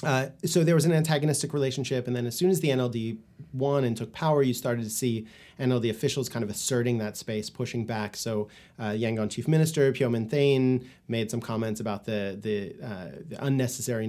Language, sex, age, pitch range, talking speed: English, male, 30-49, 110-135 Hz, 200 wpm